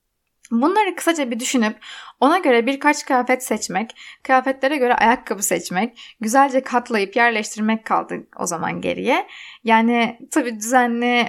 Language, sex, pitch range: Turkish, female, 220-270 Hz